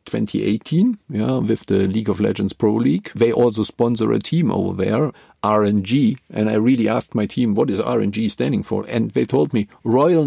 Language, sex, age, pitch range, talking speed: English, male, 40-59, 110-140 Hz, 195 wpm